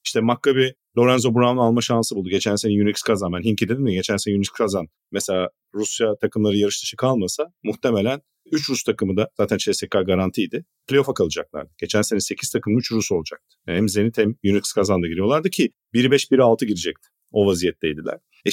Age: 50-69